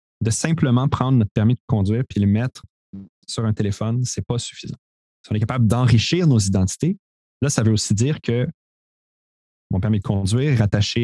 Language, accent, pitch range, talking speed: French, Canadian, 100-125 Hz, 190 wpm